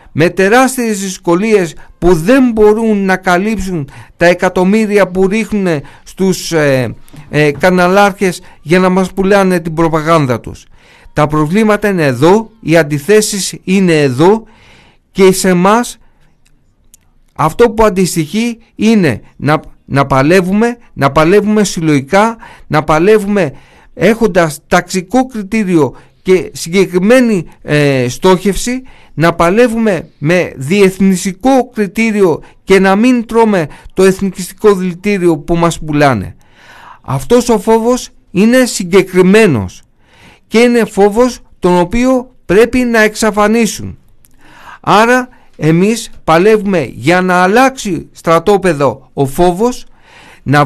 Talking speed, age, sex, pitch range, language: 105 wpm, 50-69, male, 165-220 Hz, Greek